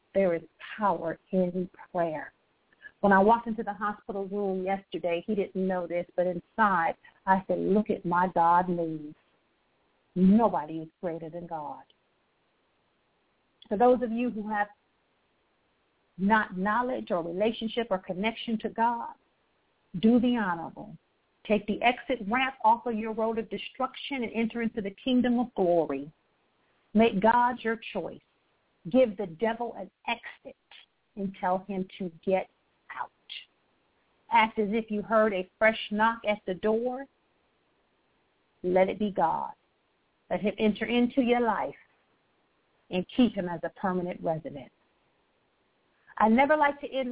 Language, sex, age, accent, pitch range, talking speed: English, female, 50-69, American, 185-235 Hz, 145 wpm